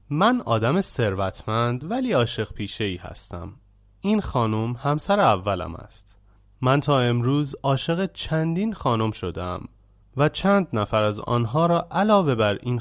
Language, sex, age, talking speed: Persian, male, 30-49, 135 wpm